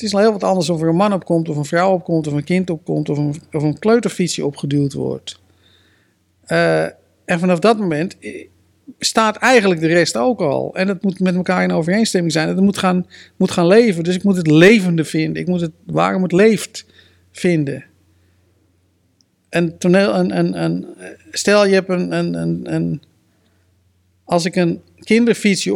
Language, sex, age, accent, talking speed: Dutch, male, 50-69, Dutch, 190 wpm